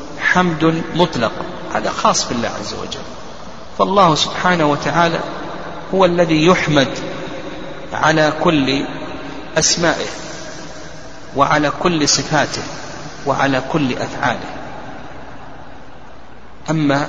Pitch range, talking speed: 130-170 Hz, 80 wpm